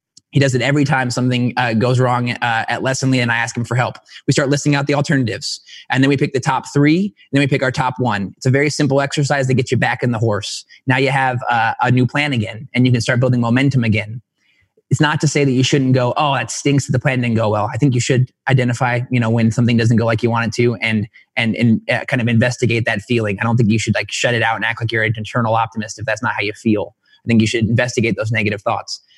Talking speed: 280 wpm